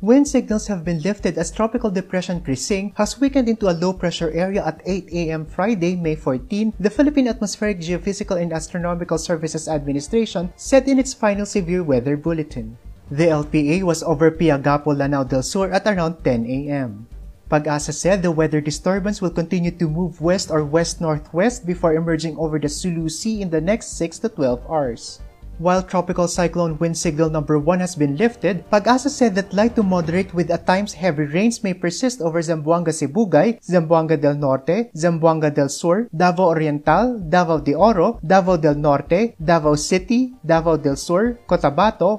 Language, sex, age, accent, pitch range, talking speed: English, male, 20-39, Filipino, 155-200 Hz, 165 wpm